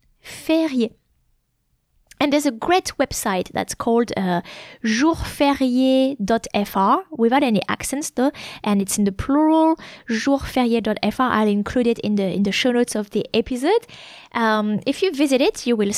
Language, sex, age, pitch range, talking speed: English, female, 20-39, 205-265 Hz, 145 wpm